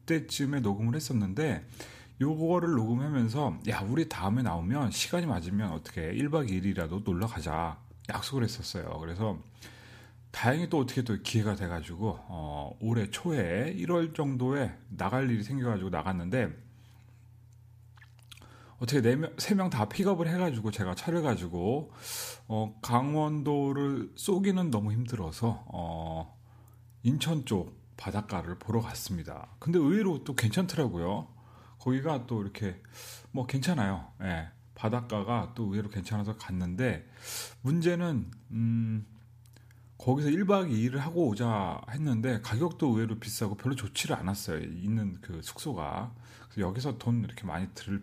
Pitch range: 105-130 Hz